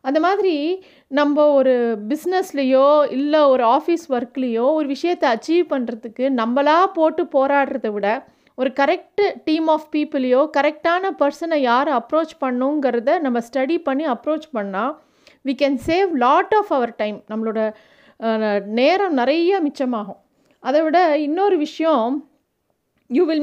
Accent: native